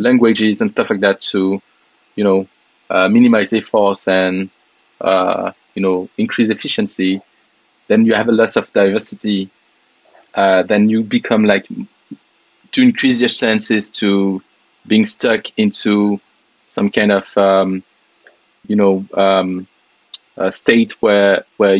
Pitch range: 95-110 Hz